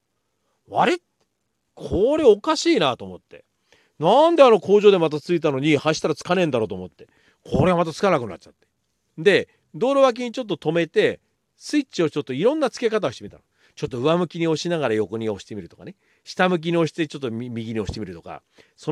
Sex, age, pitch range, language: male, 40-59, 145-230 Hz, Japanese